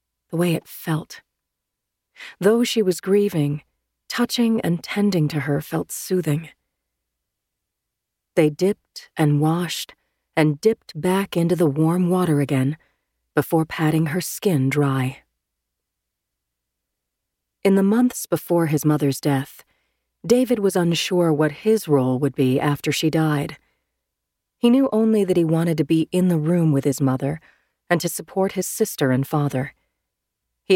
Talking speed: 140 wpm